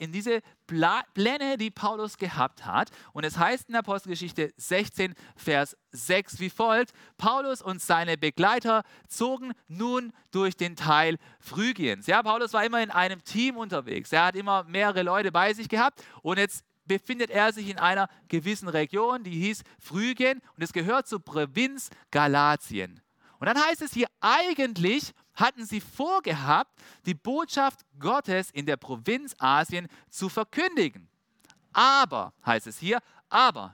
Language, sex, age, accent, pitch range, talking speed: German, male, 40-59, German, 170-240 Hz, 150 wpm